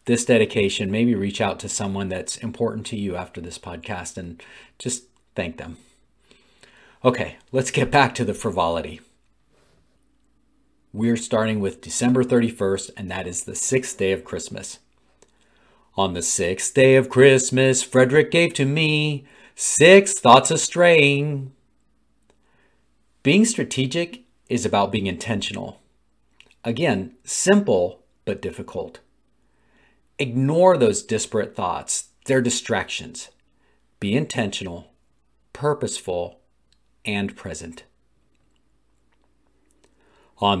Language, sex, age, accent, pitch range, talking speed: English, male, 40-59, American, 100-150 Hz, 110 wpm